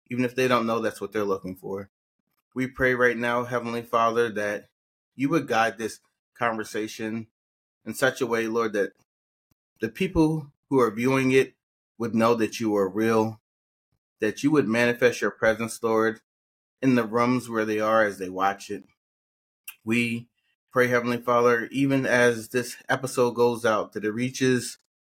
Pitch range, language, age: 110-130 Hz, English, 30-49